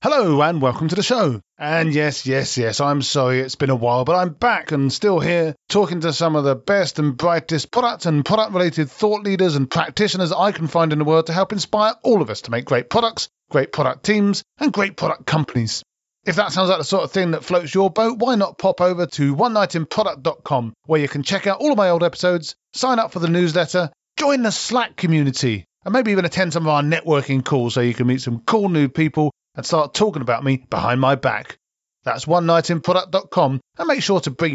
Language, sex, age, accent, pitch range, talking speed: English, male, 40-59, British, 140-190 Hz, 230 wpm